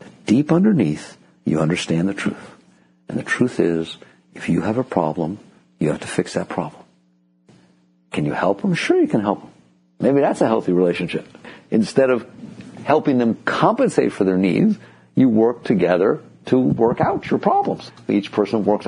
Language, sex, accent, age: English, male, American, 60-79